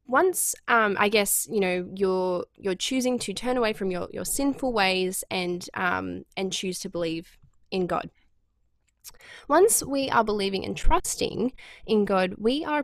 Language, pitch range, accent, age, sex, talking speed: English, 185-255 Hz, Australian, 20-39, female, 165 wpm